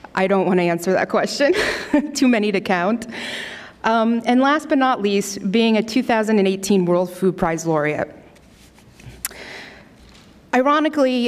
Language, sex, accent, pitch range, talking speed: English, female, American, 180-225 Hz, 135 wpm